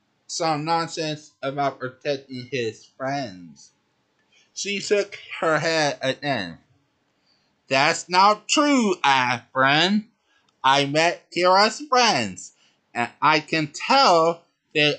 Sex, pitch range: male, 130-195 Hz